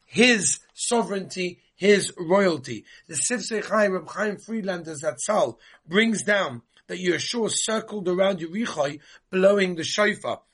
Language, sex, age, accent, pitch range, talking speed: English, male, 30-49, British, 150-205 Hz, 115 wpm